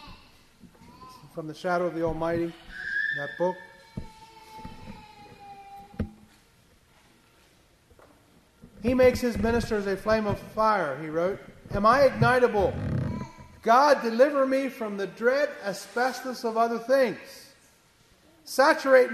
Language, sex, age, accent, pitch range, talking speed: English, male, 40-59, American, 195-255 Hz, 100 wpm